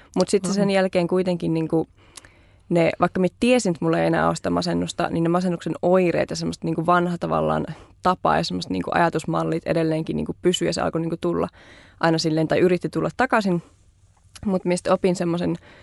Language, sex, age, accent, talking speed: Finnish, female, 20-39, native, 185 wpm